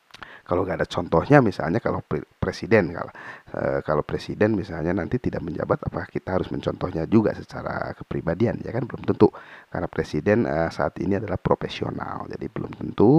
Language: Indonesian